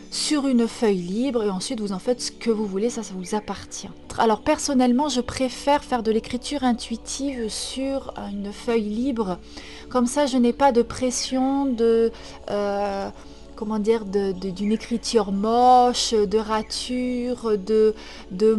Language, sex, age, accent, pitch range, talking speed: French, female, 30-49, French, 215-265 Hz, 150 wpm